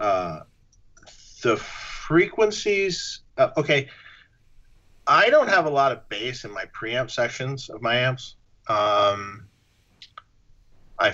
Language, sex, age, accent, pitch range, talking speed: English, male, 40-59, American, 105-130 Hz, 115 wpm